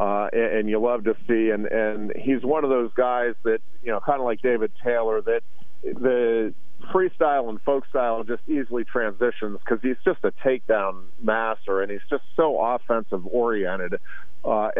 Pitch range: 110-125 Hz